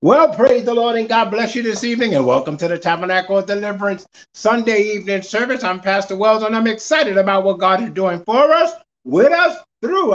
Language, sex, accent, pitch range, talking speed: English, male, American, 170-230 Hz, 215 wpm